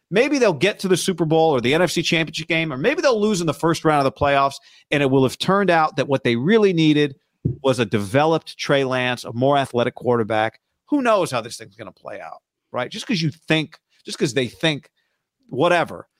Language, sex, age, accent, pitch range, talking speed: English, male, 40-59, American, 125-170 Hz, 230 wpm